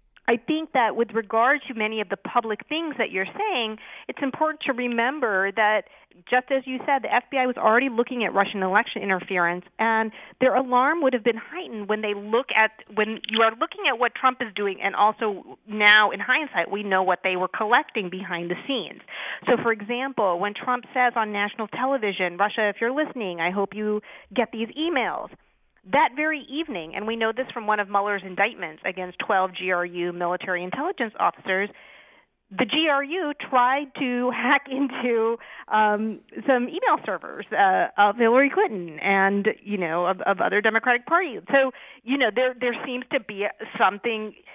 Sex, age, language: female, 40-59, English